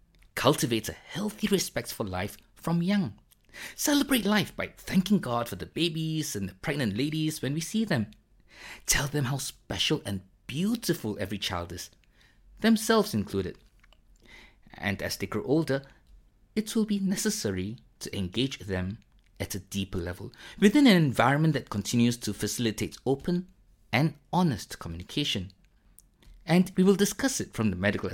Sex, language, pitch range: male, English, 100-160 Hz